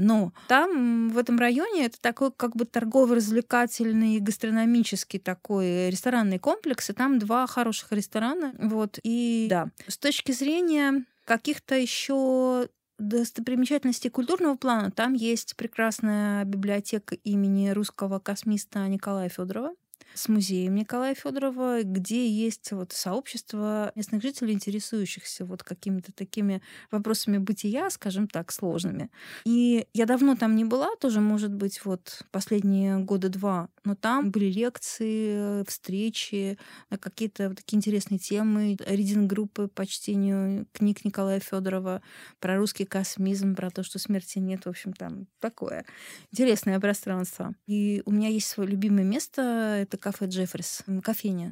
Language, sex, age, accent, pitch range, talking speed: Russian, female, 20-39, native, 195-235 Hz, 130 wpm